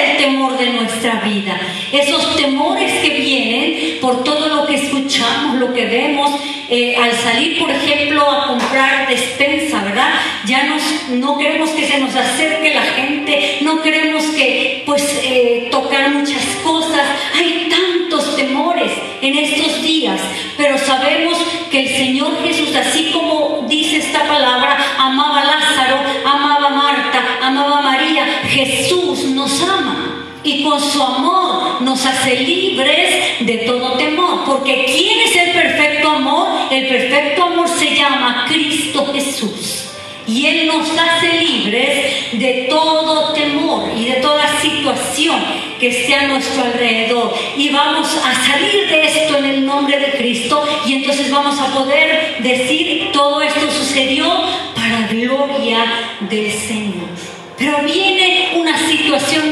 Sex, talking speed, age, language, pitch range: female, 140 wpm, 40-59, Spanish, 265-310 Hz